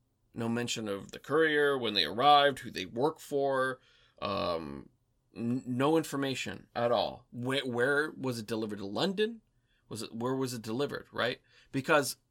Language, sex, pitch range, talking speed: English, male, 110-130 Hz, 160 wpm